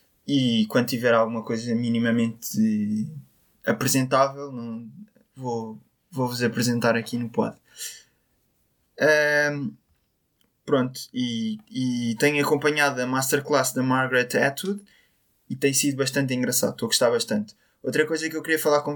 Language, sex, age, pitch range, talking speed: Portuguese, male, 20-39, 120-145 Hz, 125 wpm